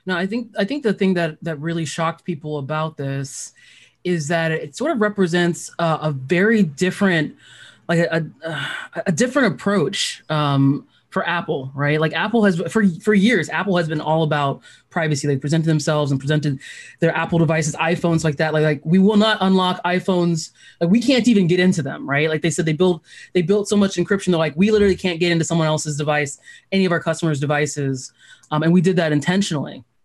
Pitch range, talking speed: 155-190 Hz, 205 wpm